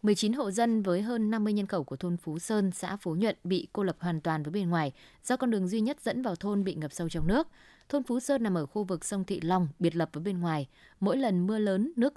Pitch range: 170-220 Hz